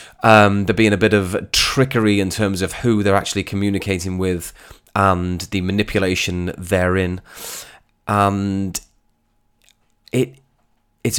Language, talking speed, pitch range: English, 115 wpm, 95-120 Hz